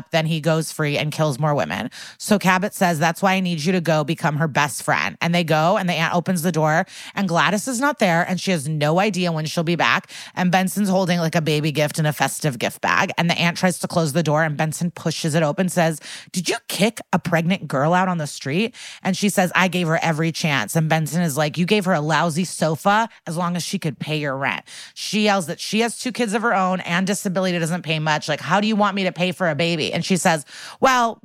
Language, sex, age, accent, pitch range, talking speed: English, female, 30-49, American, 160-200 Hz, 265 wpm